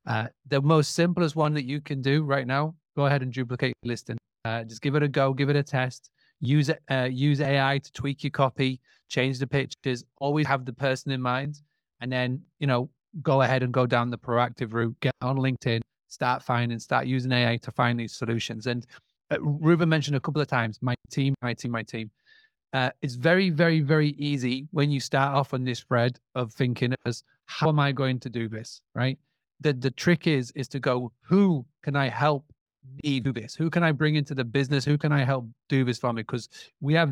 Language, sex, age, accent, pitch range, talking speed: English, male, 30-49, British, 125-150 Hz, 225 wpm